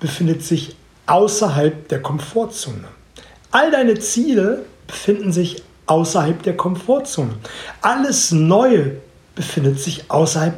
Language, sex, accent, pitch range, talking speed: German, male, German, 160-215 Hz, 100 wpm